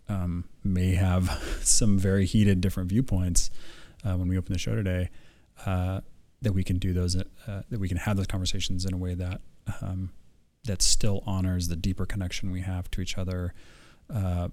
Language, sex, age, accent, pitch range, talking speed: English, male, 30-49, American, 90-100 Hz, 185 wpm